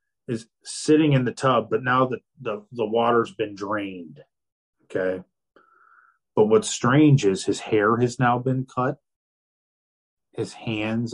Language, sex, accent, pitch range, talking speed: English, male, American, 95-120 Hz, 135 wpm